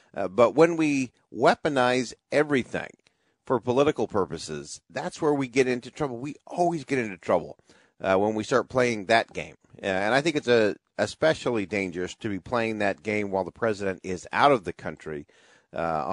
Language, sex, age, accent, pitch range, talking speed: English, male, 40-59, American, 95-140 Hz, 180 wpm